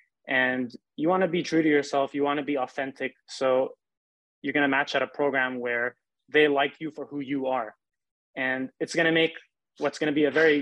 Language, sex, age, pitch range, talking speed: English, male, 20-39, 130-150 Hz, 200 wpm